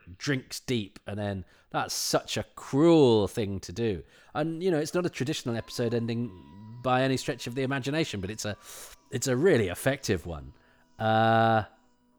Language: English